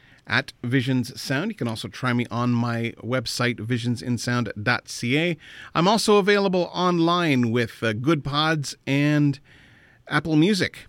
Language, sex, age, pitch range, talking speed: English, male, 40-59, 115-150 Hz, 125 wpm